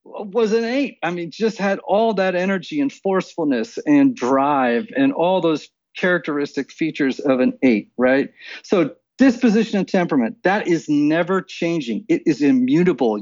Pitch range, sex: 145-245 Hz, male